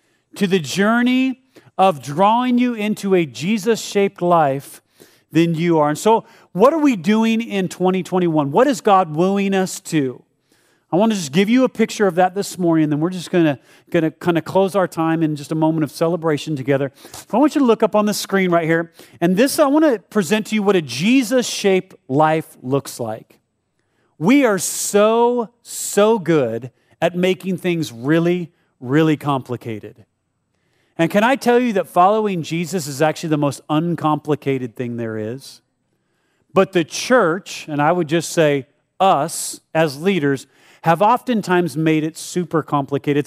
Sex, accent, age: male, American, 40-59